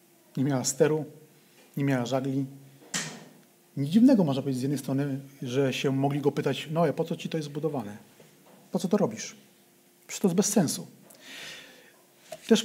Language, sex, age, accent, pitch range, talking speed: Polish, male, 40-59, native, 140-185 Hz, 160 wpm